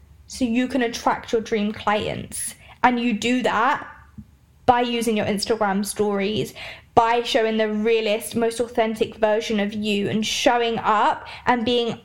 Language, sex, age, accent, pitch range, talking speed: English, female, 20-39, British, 220-250 Hz, 150 wpm